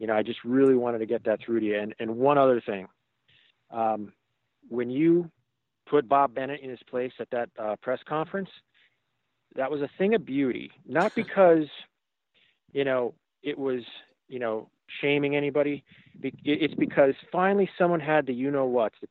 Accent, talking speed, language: American, 180 wpm, English